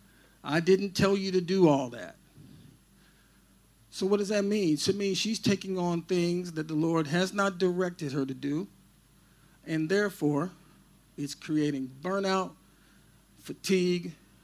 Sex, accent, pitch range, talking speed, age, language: male, American, 140-185 Hz, 145 wpm, 50-69, English